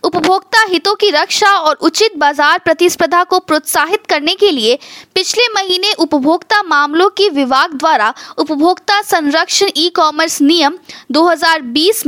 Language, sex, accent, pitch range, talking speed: Hindi, female, native, 280-365 Hz, 130 wpm